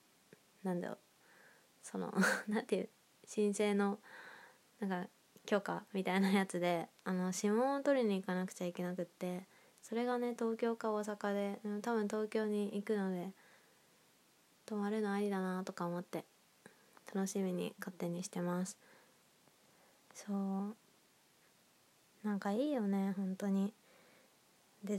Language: Japanese